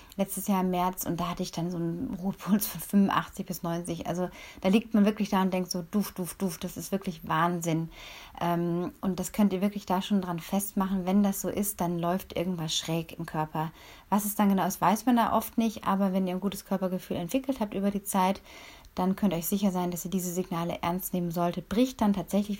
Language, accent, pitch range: German, German, 180-205 Hz